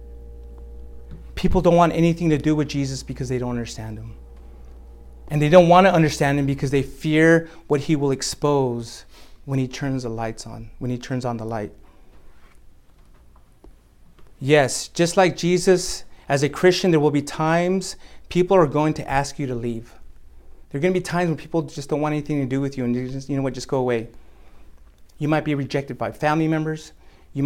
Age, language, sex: 30-49, English, male